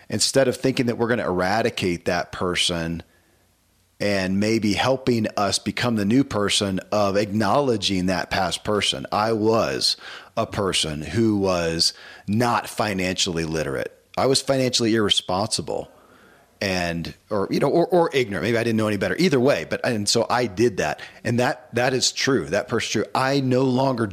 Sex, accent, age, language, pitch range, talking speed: male, American, 40-59, English, 95-125 Hz, 165 wpm